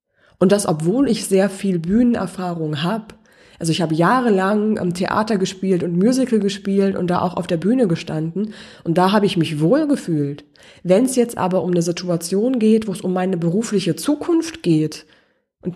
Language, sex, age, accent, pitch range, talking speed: German, female, 20-39, German, 175-215 Hz, 185 wpm